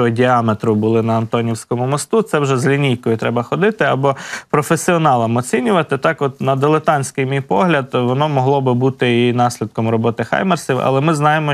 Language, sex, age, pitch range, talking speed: Ukrainian, male, 20-39, 115-150 Hz, 160 wpm